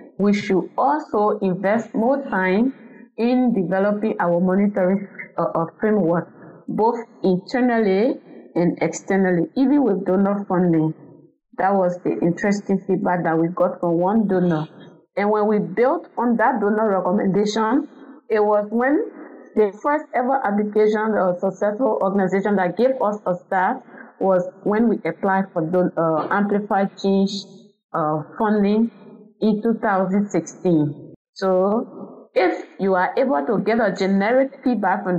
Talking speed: 135 wpm